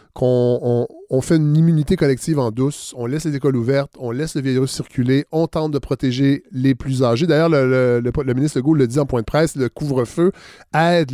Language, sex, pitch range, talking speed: French, male, 125-160 Hz, 215 wpm